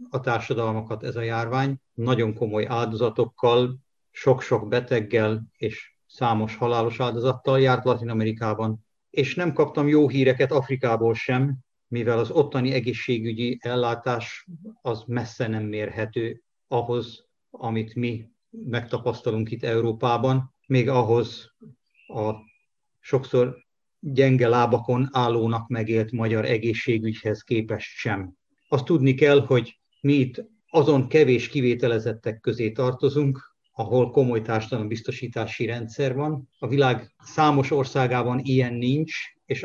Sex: male